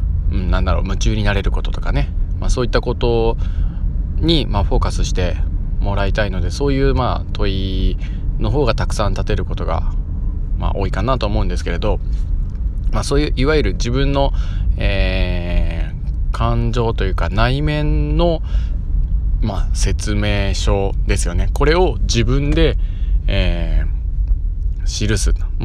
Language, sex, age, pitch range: Japanese, male, 20-39, 85-110 Hz